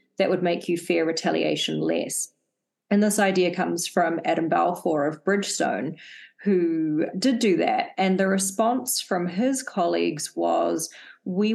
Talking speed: 145 wpm